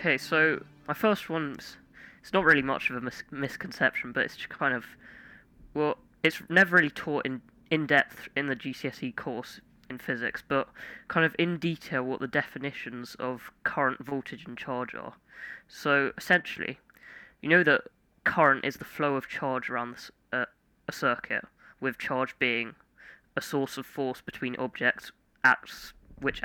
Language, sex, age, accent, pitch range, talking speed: English, female, 20-39, British, 125-155 Hz, 165 wpm